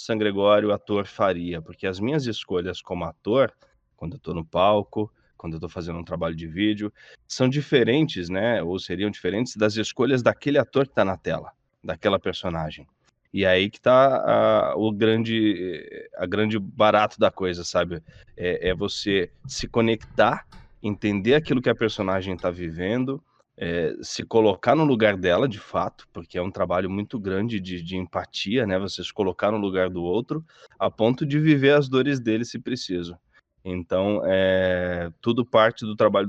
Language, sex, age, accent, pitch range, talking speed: Portuguese, male, 20-39, Brazilian, 90-115 Hz, 175 wpm